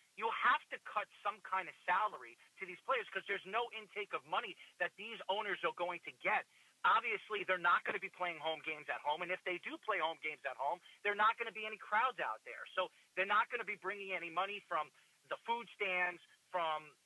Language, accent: English, American